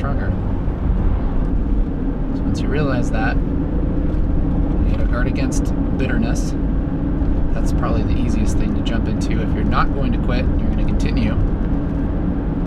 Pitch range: 85-100 Hz